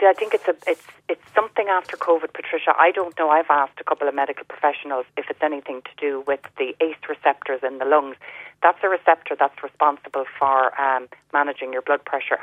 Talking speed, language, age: 210 wpm, English, 40-59